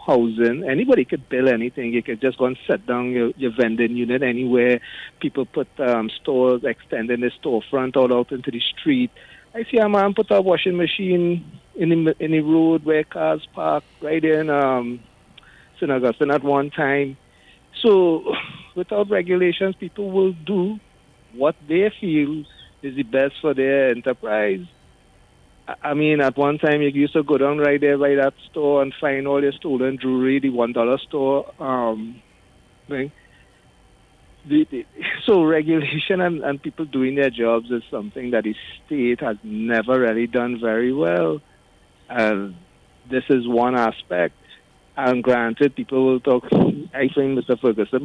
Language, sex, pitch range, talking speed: English, male, 120-155 Hz, 160 wpm